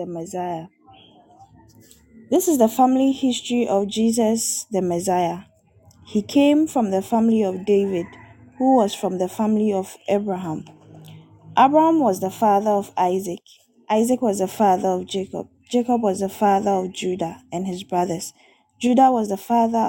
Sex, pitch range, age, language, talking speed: female, 185-235 Hz, 20-39, English, 150 wpm